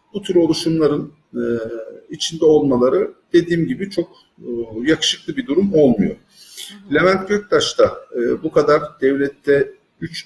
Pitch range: 120-160 Hz